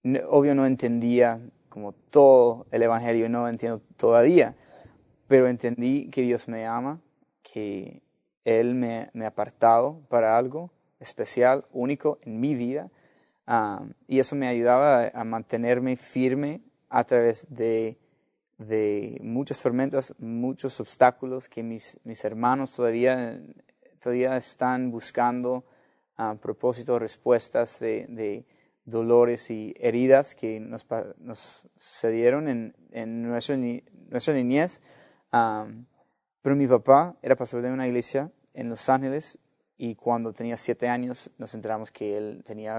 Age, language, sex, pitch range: 30-49, English, male, 115-130 Hz